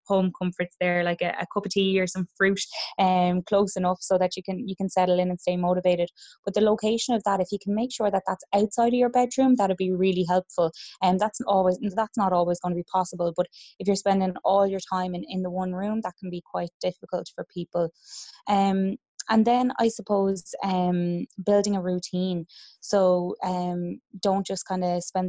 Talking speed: 215 wpm